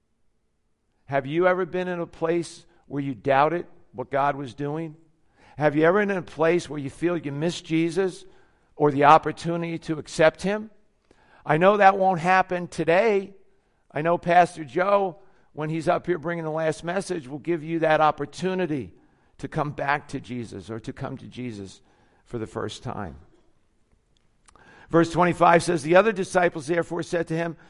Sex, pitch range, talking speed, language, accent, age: male, 155-195 Hz, 175 wpm, English, American, 50-69